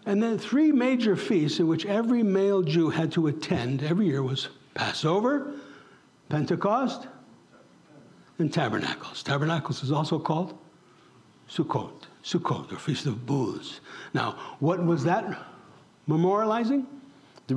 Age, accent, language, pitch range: 60-79, American, English, 155-215 Hz